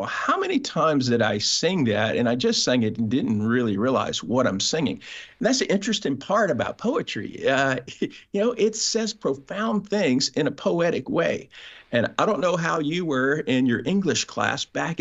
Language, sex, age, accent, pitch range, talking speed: English, male, 50-69, American, 115-175 Hz, 195 wpm